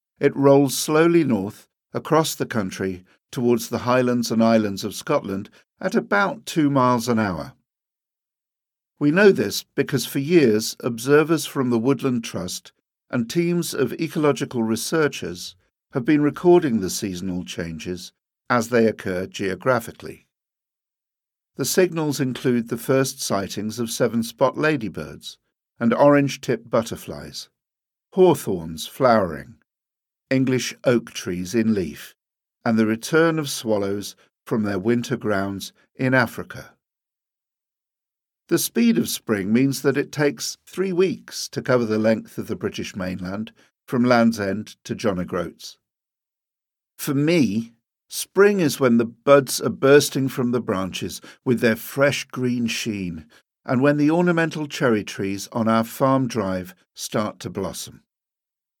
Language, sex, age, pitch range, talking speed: English, male, 50-69, 110-145 Hz, 135 wpm